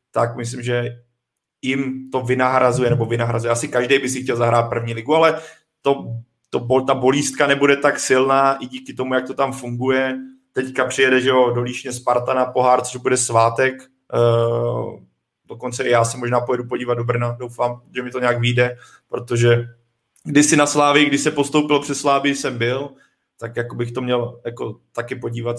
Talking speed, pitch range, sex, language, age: 180 wpm, 120-130 Hz, male, Czech, 20-39